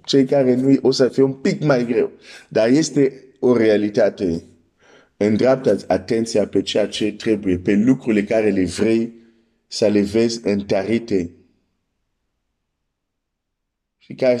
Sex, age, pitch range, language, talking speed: male, 50-69, 100-130 Hz, Romanian, 135 wpm